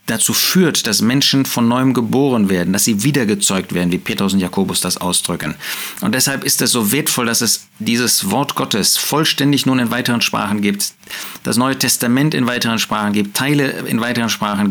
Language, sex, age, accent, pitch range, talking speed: German, male, 40-59, German, 105-145 Hz, 190 wpm